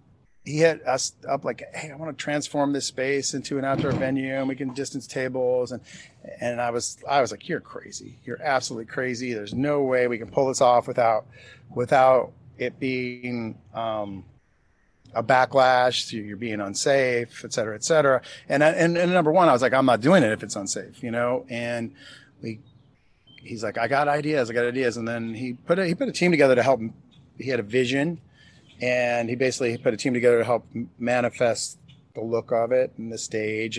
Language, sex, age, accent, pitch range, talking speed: English, male, 40-59, American, 115-140 Hz, 210 wpm